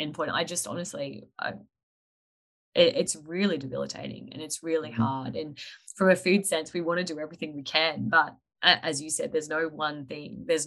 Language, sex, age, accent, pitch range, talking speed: English, female, 20-39, Australian, 150-175 Hz, 195 wpm